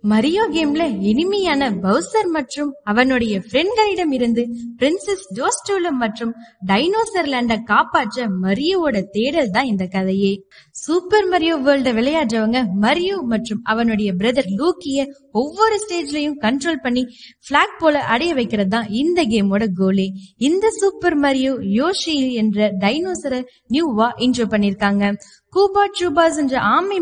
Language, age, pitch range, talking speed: Tamil, 20-39, 220-315 Hz, 70 wpm